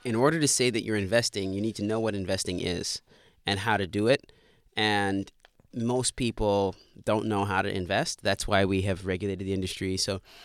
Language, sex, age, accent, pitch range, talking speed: English, male, 30-49, American, 95-115 Hz, 200 wpm